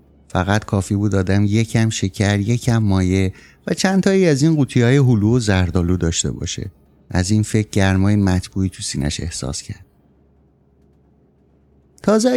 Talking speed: 145 wpm